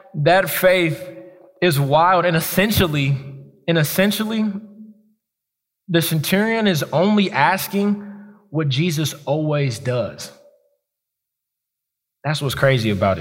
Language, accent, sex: English, American, male